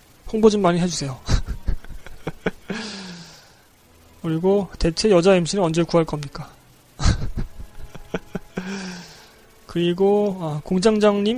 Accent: native